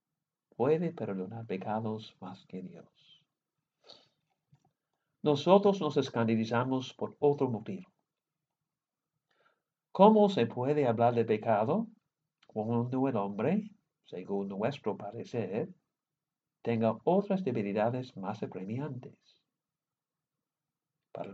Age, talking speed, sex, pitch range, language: 60-79, 85 wpm, male, 115-155 Hz, English